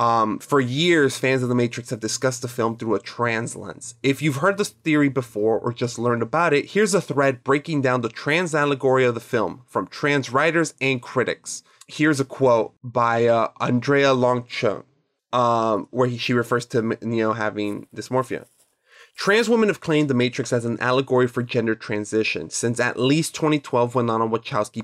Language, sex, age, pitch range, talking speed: English, male, 20-39, 115-150 Hz, 190 wpm